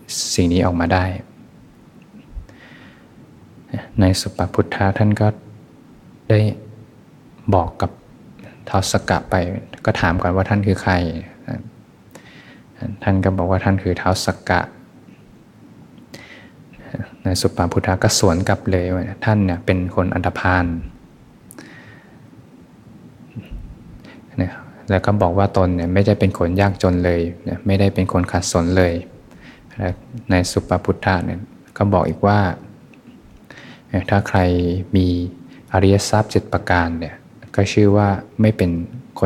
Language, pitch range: Thai, 90-100 Hz